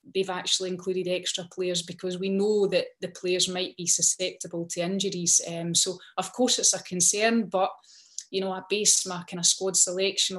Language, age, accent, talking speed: English, 30-49, British, 190 wpm